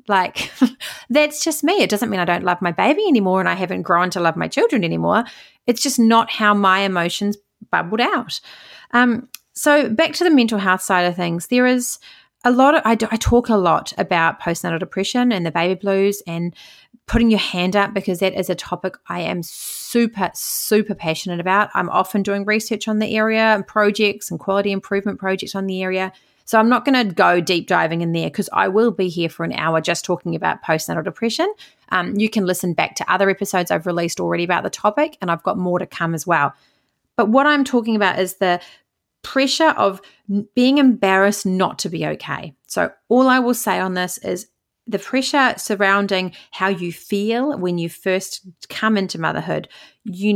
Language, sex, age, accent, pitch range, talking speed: English, female, 30-49, Australian, 180-230 Hz, 205 wpm